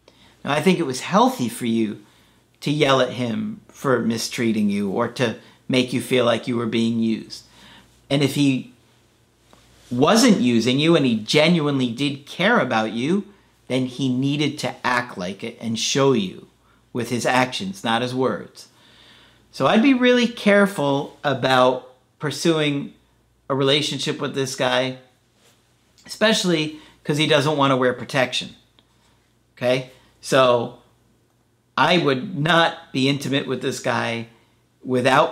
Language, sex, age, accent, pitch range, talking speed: English, male, 40-59, American, 120-145 Hz, 145 wpm